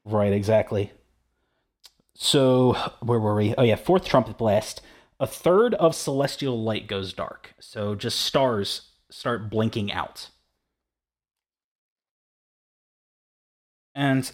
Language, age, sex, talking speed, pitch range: English, 30-49, male, 105 wpm, 105-135 Hz